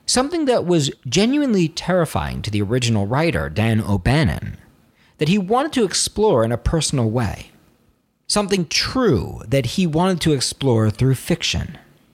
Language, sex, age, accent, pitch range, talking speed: English, male, 40-59, American, 105-160 Hz, 145 wpm